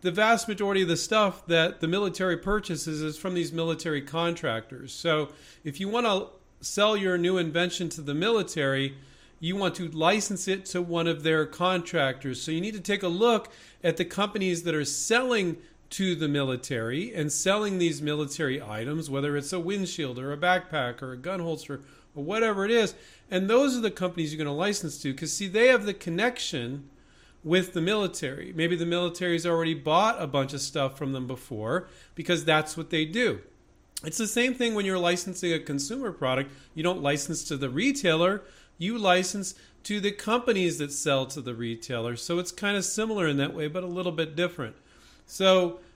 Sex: male